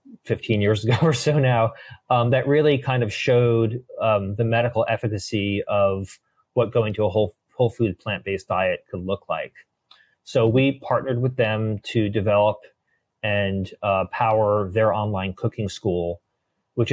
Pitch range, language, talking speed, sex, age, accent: 95-120 Hz, English, 155 wpm, male, 30-49, American